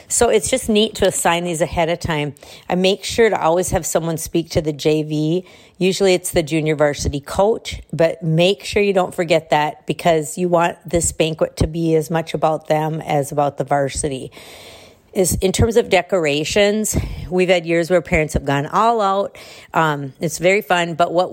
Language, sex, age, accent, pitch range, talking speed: English, female, 50-69, American, 150-180 Hz, 190 wpm